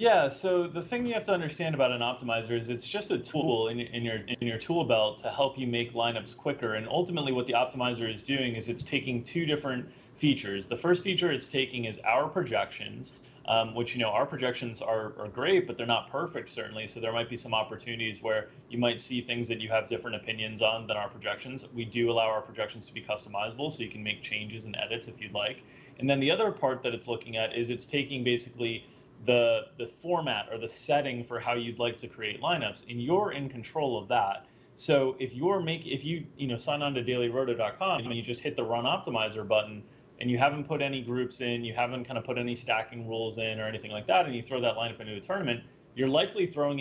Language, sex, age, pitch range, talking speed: English, male, 20-39, 115-135 Hz, 235 wpm